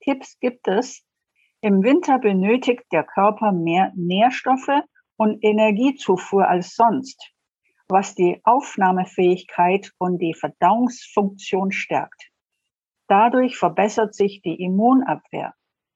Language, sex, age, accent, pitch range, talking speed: German, female, 60-79, German, 190-245 Hz, 100 wpm